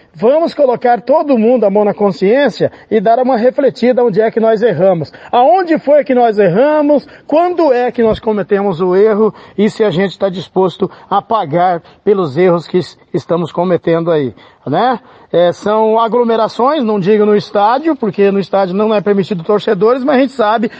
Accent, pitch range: Brazilian, 200-245 Hz